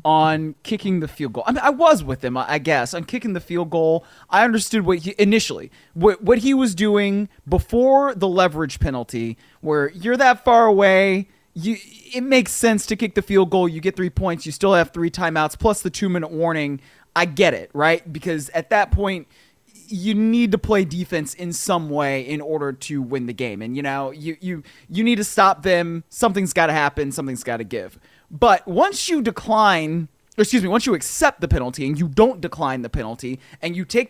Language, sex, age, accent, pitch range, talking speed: English, male, 20-39, American, 160-225 Hz, 210 wpm